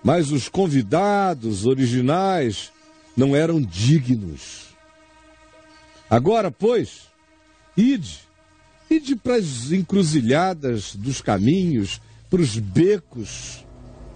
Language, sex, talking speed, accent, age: English, male, 80 wpm, Brazilian, 60-79